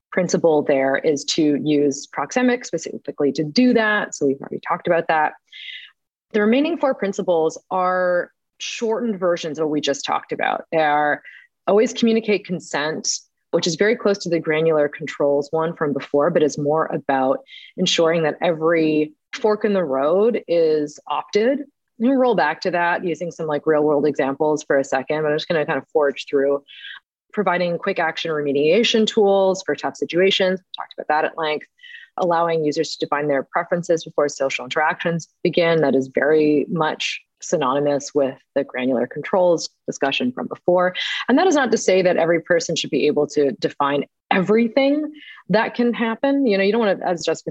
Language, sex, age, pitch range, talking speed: English, female, 30-49, 150-195 Hz, 180 wpm